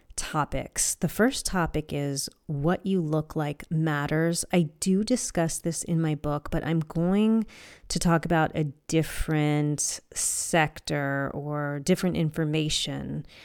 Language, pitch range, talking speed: English, 150-180 Hz, 130 wpm